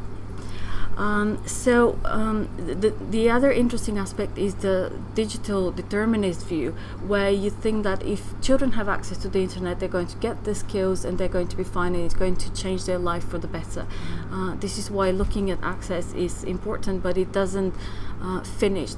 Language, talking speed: English, 190 wpm